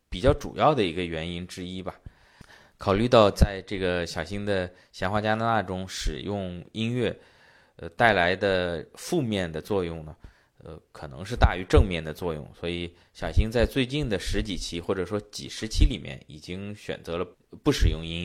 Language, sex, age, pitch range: Chinese, male, 20-39, 90-110 Hz